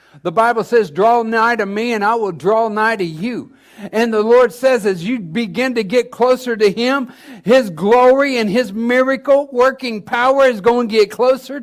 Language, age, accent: English, 60-79, American